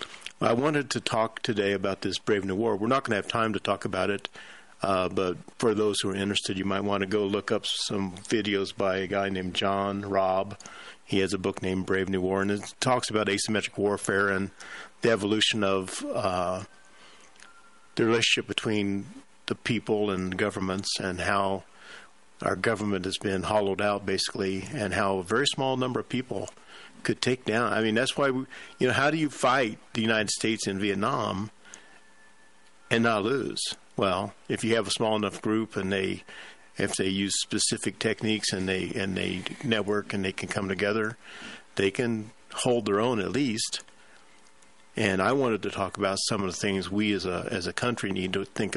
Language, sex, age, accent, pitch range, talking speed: English, male, 50-69, American, 95-110 Hz, 195 wpm